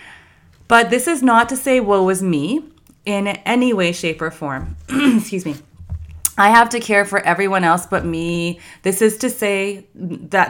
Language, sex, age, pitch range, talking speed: English, female, 30-49, 155-215 Hz, 175 wpm